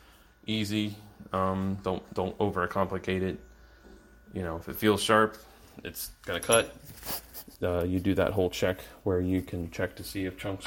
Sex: male